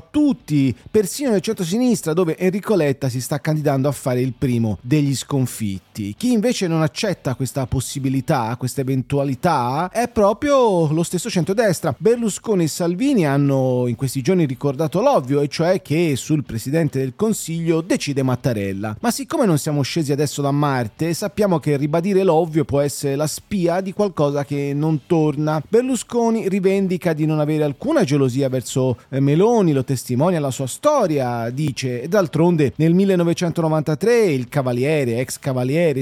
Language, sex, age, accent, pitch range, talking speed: Italian, male, 30-49, native, 135-185 Hz, 150 wpm